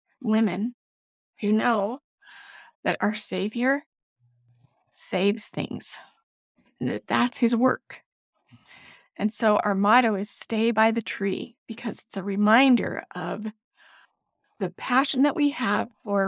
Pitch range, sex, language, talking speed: 210-250 Hz, female, English, 120 wpm